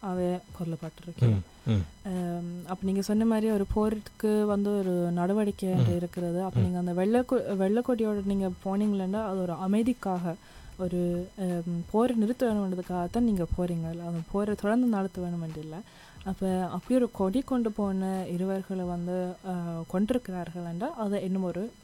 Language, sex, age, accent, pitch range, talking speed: Tamil, female, 20-39, native, 170-205 Hz, 130 wpm